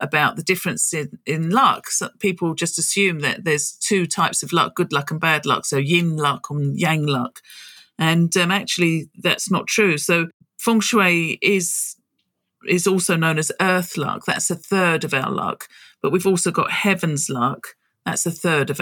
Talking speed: 190 wpm